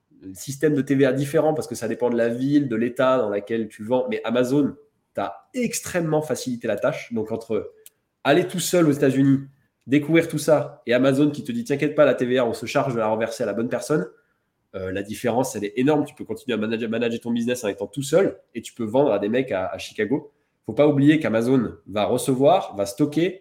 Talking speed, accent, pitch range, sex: 235 wpm, French, 115-145 Hz, male